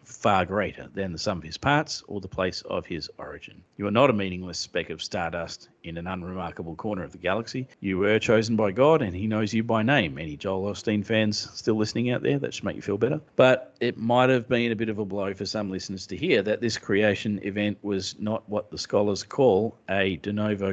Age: 40-59